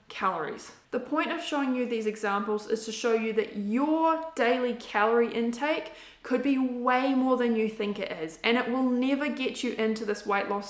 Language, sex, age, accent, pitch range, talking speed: English, female, 20-39, Australian, 215-255 Hz, 200 wpm